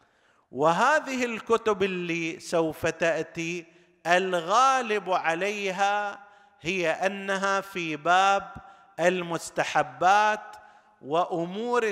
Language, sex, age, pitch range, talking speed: Arabic, male, 50-69, 155-205 Hz, 65 wpm